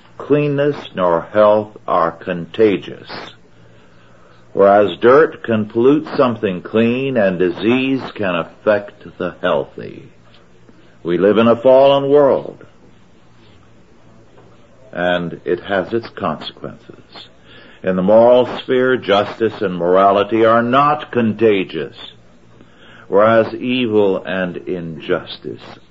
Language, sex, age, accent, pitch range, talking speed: English, male, 60-79, American, 85-115 Hz, 95 wpm